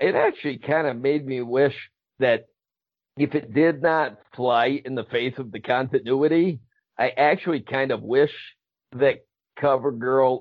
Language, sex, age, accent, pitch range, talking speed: English, male, 50-69, American, 115-140 Hz, 150 wpm